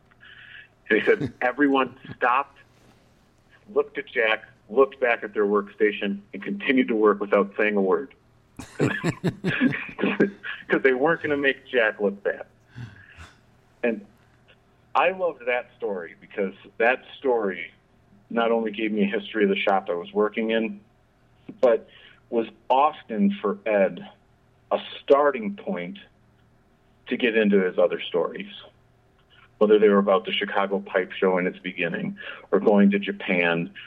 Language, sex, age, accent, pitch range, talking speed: English, male, 40-59, American, 100-140 Hz, 140 wpm